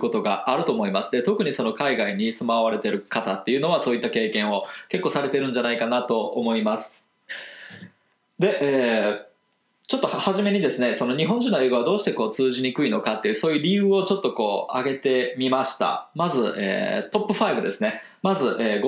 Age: 20-39